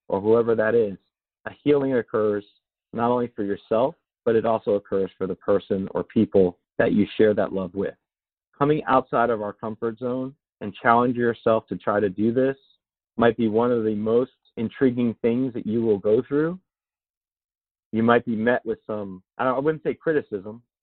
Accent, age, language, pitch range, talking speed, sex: American, 40-59, English, 105-120 Hz, 180 wpm, male